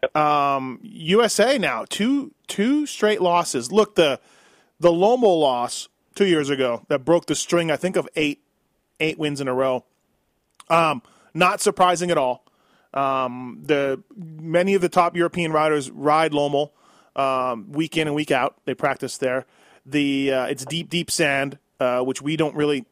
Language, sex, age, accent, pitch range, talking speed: English, male, 30-49, American, 135-175 Hz, 165 wpm